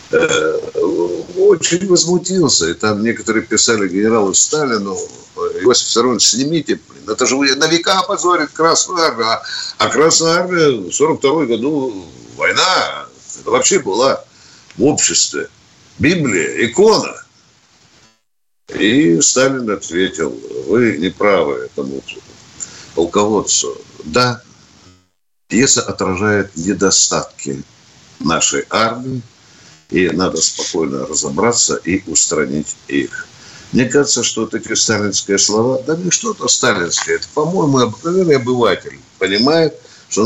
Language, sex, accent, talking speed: Russian, male, native, 100 wpm